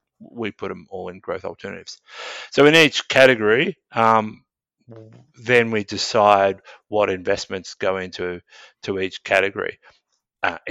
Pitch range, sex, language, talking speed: 95-115 Hz, male, English, 130 wpm